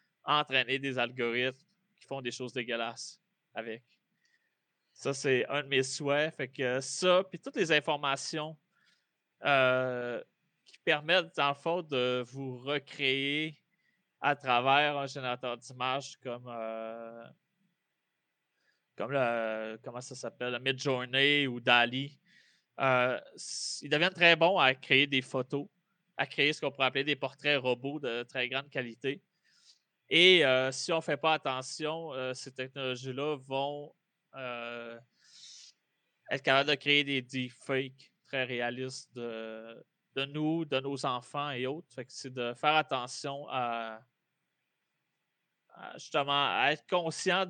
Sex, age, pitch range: male, 20-39, 125-145 Hz